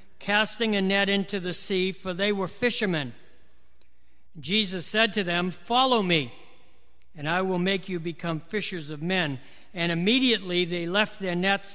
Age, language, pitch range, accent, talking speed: 60-79, English, 175-215 Hz, American, 160 wpm